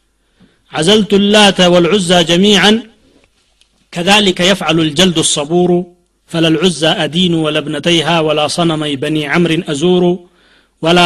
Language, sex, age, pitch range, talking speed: Amharic, male, 40-59, 150-190 Hz, 100 wpm